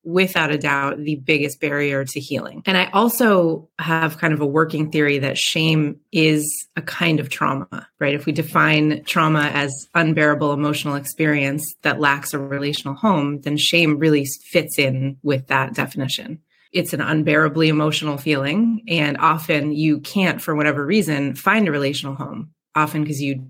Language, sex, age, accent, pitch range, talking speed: English, female, 30-49, American, 145-170 Hz, 165 wpm